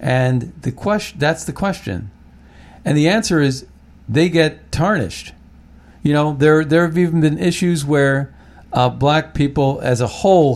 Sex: male